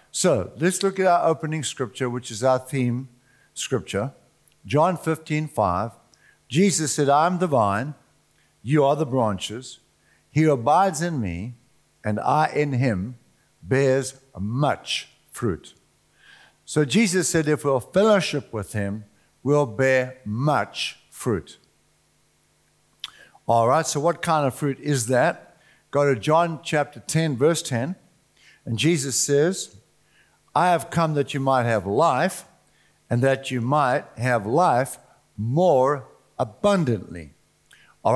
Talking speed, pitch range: 130 wpm, 120-155 Hz